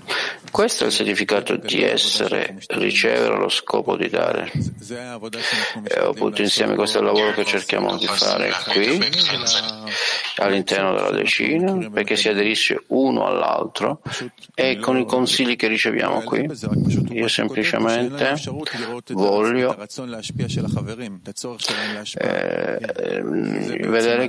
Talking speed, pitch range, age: 105 wpm, 105-125 Hz, 50-69